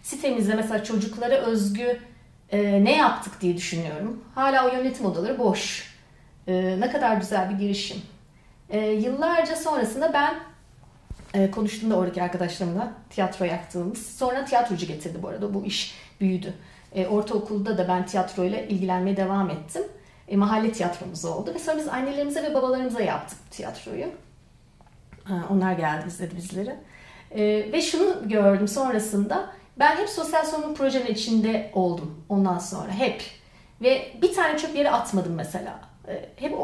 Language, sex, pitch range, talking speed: Turkish, female, 195-290 Hz, 130 wpm